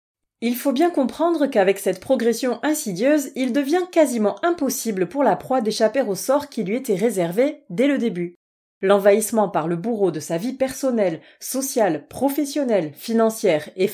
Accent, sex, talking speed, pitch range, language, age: French, female, 160 wpm, 190-265 Hz, French, 30-49